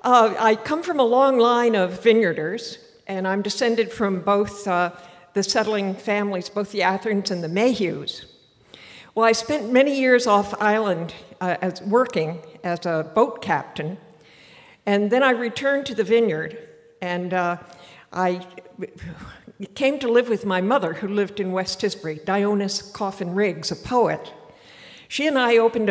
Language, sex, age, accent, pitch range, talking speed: English, female, 60-79, American, 185-230 Hz, 155 wpm